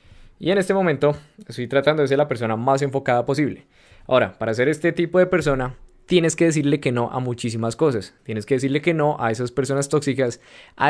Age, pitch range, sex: 20-39, 130-165 Hz, male